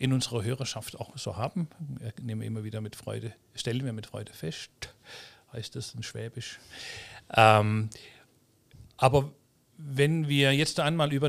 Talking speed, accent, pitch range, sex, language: 150 wpm, German, 115-130 Hz, male, German